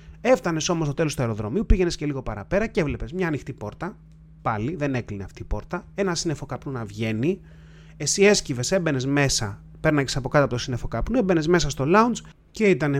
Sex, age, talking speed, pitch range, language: male, 30-49, 200 wpm, 125-160 Hz, Greek